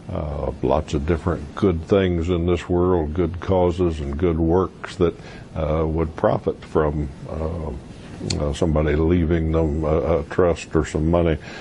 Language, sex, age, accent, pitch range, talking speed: English, male, 60-79, American, 80-95 Hz, 155 wpm